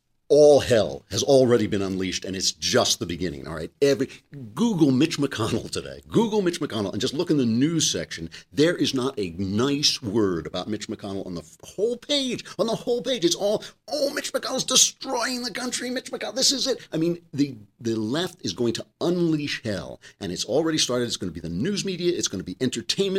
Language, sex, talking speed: English, male, 220 wpm